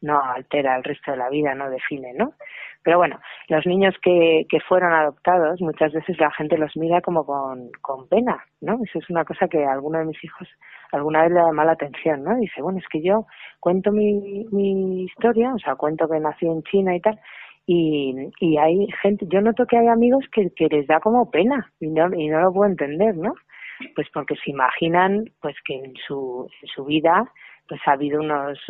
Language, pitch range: Spanish, 150-180 Hz